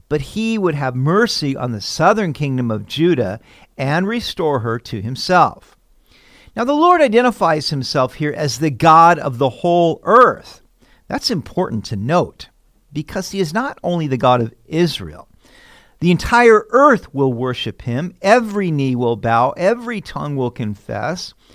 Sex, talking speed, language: male, 155 wpm, English